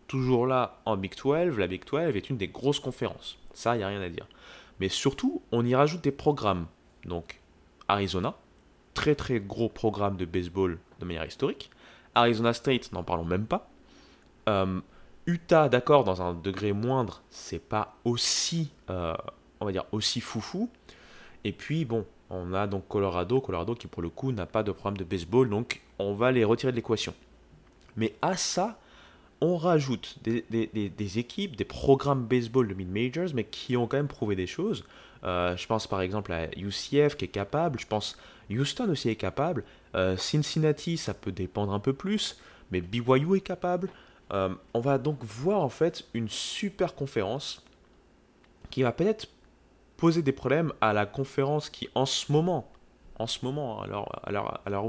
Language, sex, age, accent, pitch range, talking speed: French, male, 20-39, French, 95-140 Hz, 185 wpm